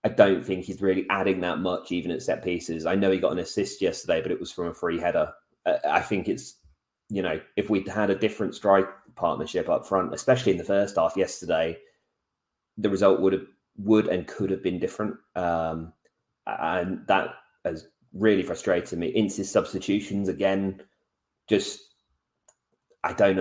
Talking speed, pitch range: 175 wpm, 85-100 Hz